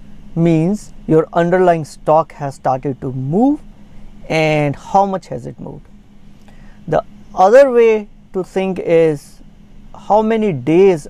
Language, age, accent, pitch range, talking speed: English, 50-69, Indian, 150-200 Hz, 125 wpm